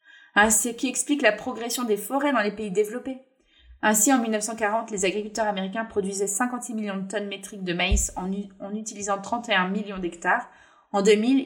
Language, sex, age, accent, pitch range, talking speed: French, female, 20-39, French, 205-255 Hz, 180 wpm